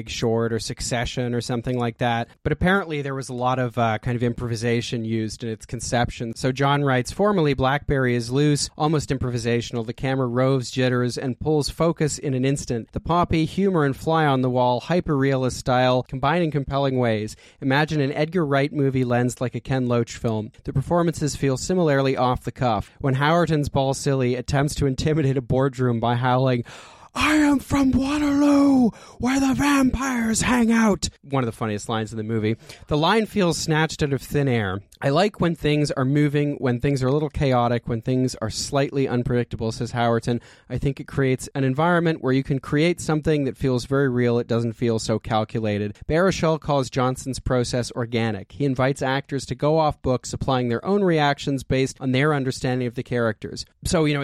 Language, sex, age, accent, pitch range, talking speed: English, male, 30-49, American, 120-145 Hz, 190 wpm